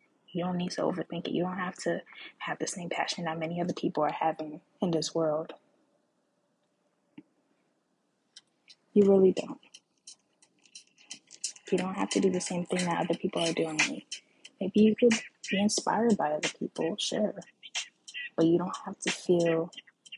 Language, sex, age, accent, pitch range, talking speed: English, female, 20-39, American, 165-200 Hz, 160 wpm